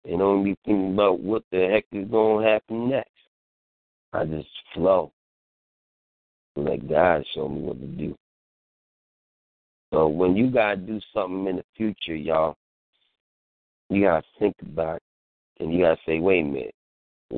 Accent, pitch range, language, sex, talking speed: American, 80-110 Hz, English, male, 165 wpm